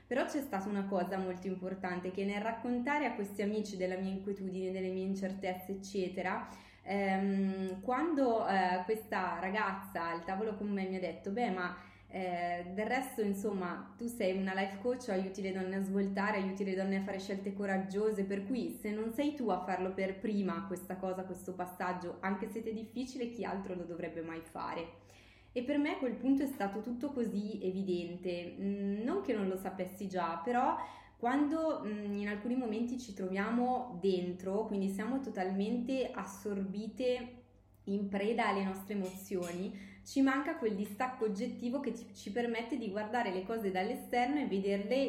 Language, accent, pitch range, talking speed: Italian, native, 185-230 Hz, 170 wpm